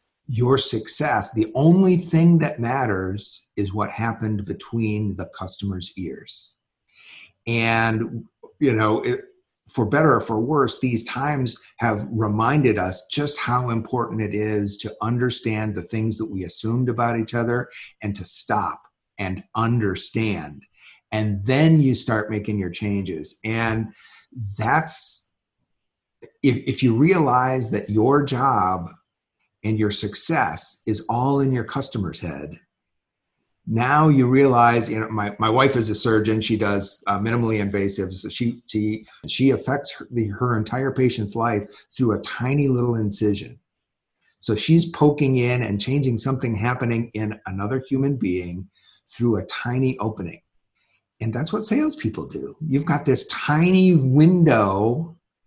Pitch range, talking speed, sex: 105-135 Hz, 140 wpm, male